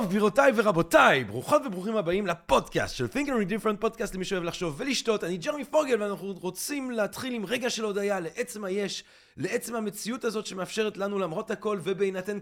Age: 30-49